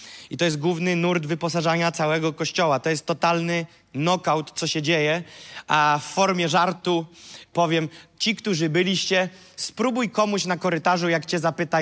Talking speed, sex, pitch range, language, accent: 150 wpm, male, 170-230 Hz, Polish, native